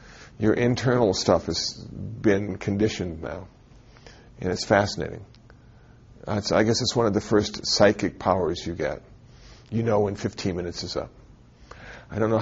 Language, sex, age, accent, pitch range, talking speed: English, male, 50-69, American, 105-120 Hz, 150 wpm